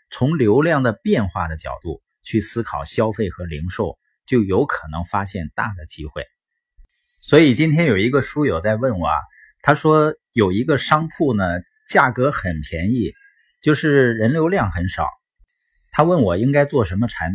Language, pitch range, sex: Chinese, 95-140 Hz, male